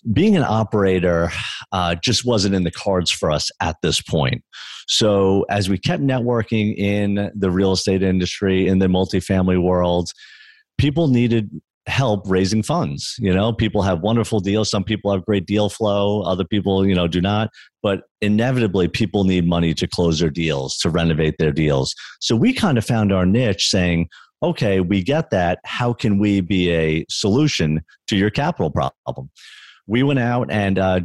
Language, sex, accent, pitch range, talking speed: English, male, American, 90-110 Hz, 175 wpm